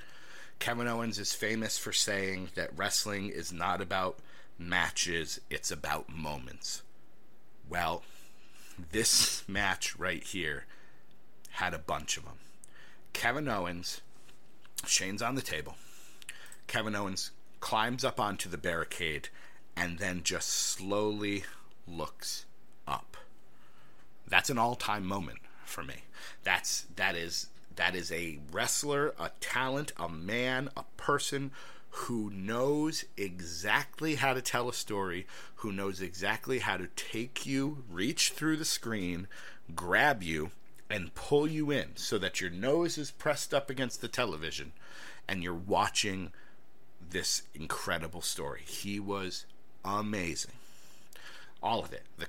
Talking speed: 125 wpm